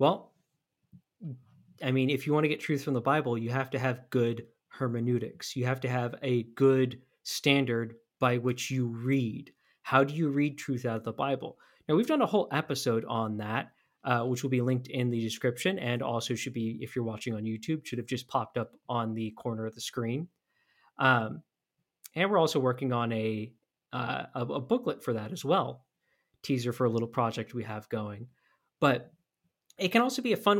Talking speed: 205 wpm